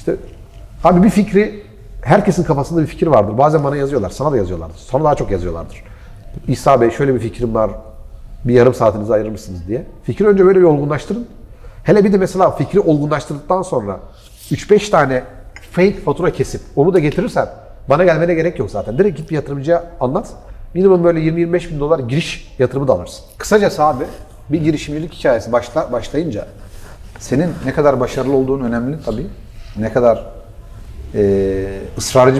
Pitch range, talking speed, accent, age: 110-155 Hz, 160 wpm, native, 40-59